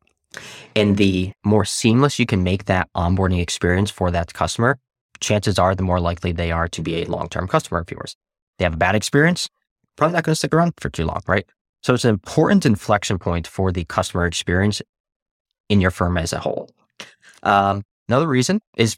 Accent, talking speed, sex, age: American, 200 wpm, male, 20-39